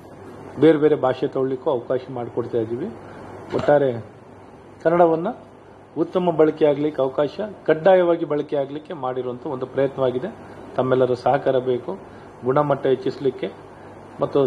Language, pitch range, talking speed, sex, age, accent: Kannada, 130-155 Hz, 100 wpm, male, 40-59, native